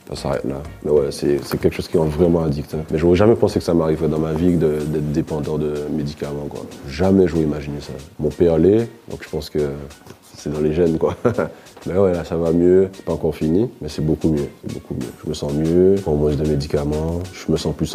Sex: male